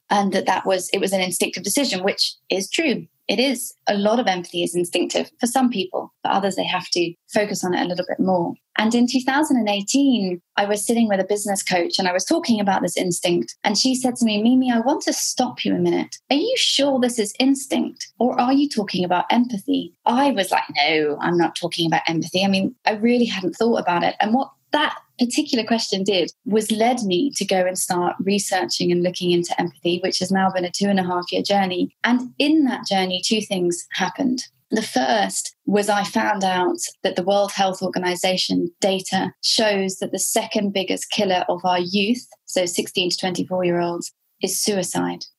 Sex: female